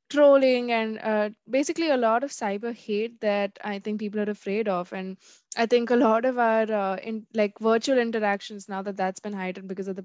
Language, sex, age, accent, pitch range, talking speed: English, female, 20-39, Indian, 205-240 Hz, 215 wpm